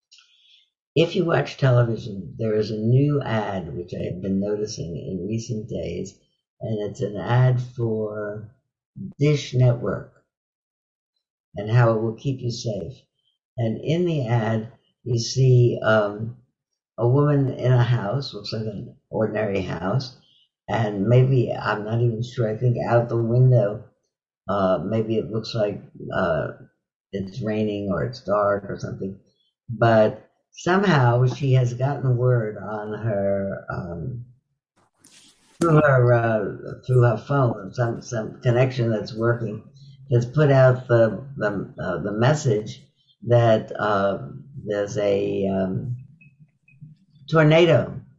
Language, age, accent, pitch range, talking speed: English, 60-79, American, 110-135 Hz, 130 wpm